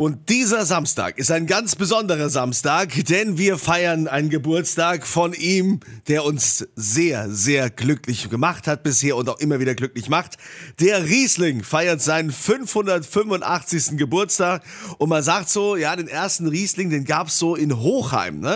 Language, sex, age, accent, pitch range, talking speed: German, male, 30-49, German, 140-185 Hz, 160 wpm